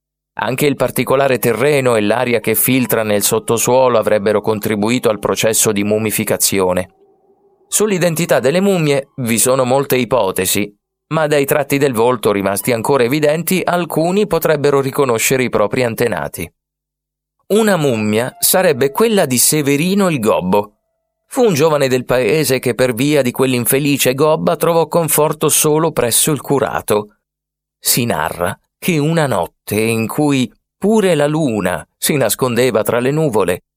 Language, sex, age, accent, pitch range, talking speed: Italian, male, 30-49, native, 115-155 Hz, 135 wpm